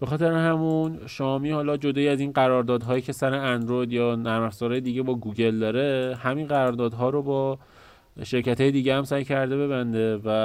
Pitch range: 115-135 Hz